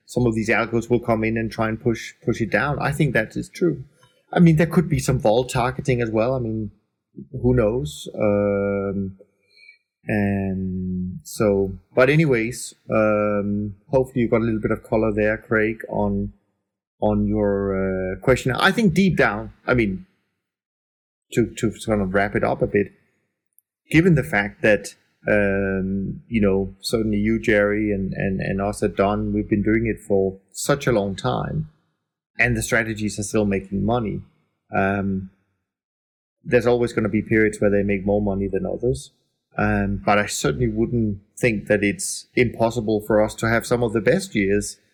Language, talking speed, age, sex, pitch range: English, 180 wpm, 30-49, male, 100-125 Hz